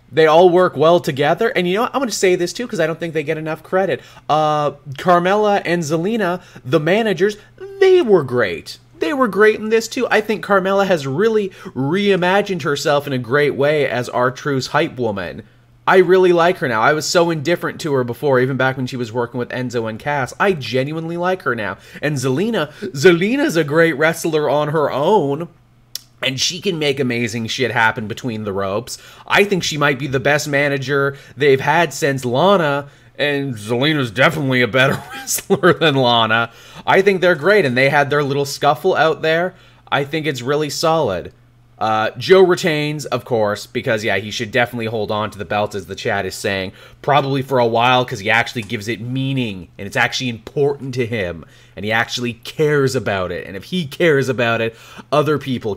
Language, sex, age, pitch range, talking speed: English, male, 30-49, 120-170 Hz, 200 wpm